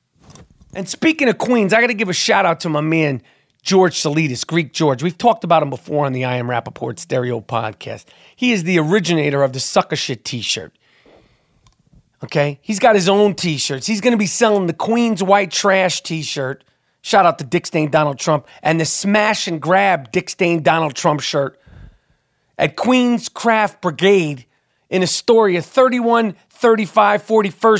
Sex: male